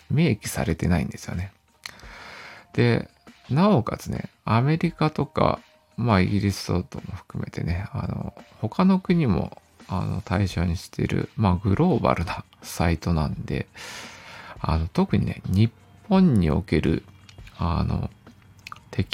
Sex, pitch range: male, 95-140 Hz